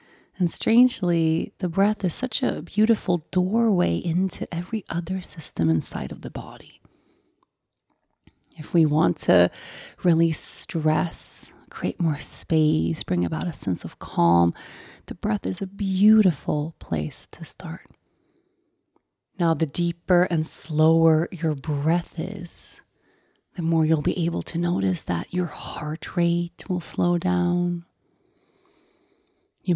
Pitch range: 155-205 Hz